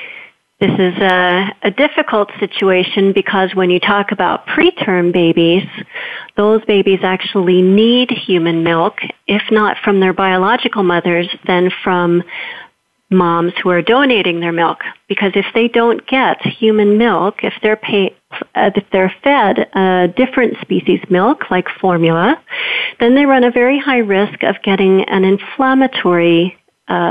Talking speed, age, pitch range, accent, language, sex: 140 wpm, 40-59, 185-225 Hz, American, English, female